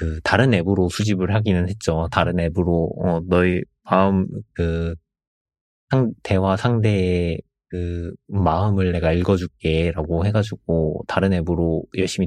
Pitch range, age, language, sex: 85-105 Hz, 30-49, Korean, male